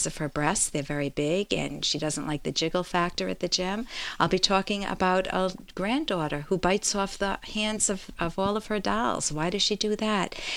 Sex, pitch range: female, 165-225 Hz